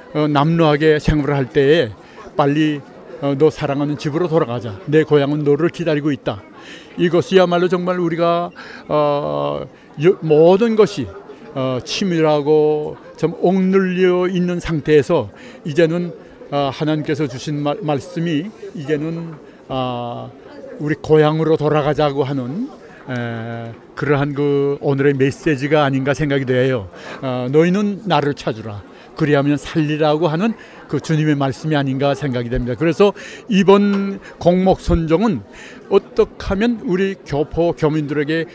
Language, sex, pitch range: Korean, male, 140-170 Hz